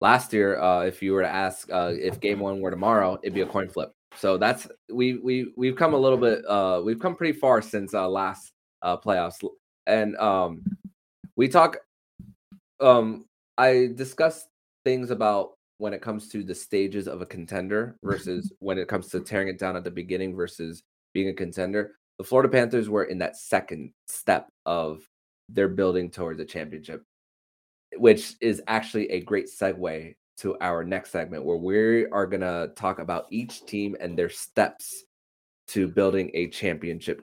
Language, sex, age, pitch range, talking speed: English, male, 20-39, 90-120 Hz, 180 wpm